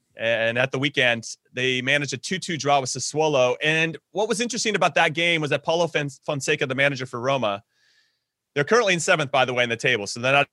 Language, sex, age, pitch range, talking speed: English, male, 30-49, 125-160 Hz, 220 wpm